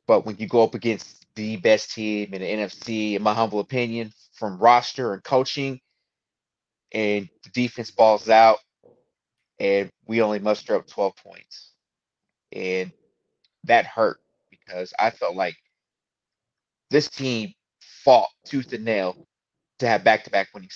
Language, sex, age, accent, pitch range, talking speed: English, male, 30-49, American, 105-130 Hz, 145 wpm